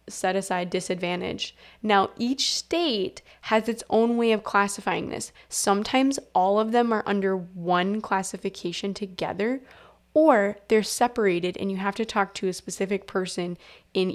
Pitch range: 185-220 Hz